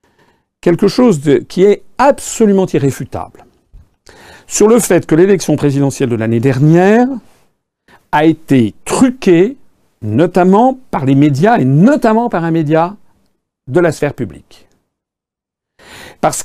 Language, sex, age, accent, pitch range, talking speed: French, male, 50-69, French, 130-200 Hz, 120 wpm